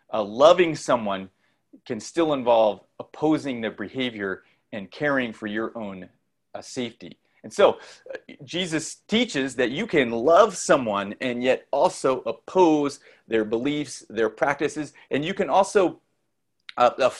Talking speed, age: 140 wpm, 40-59